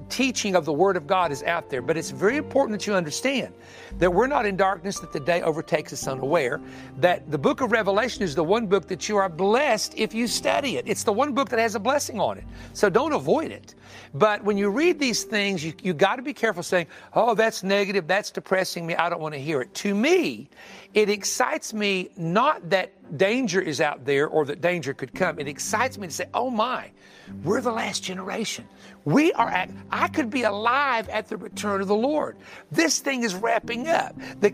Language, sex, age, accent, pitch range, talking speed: English, male, 60-79, American, 170-230 Hz, 220 wpm